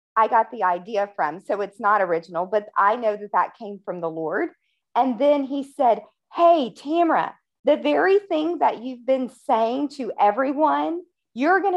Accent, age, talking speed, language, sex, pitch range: American, 40-59, 180 wpm, English, female, 210-305 Hz